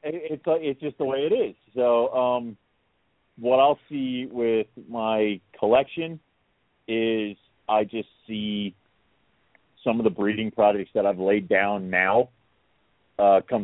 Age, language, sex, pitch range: 40-59, English, male, 95-120 Hz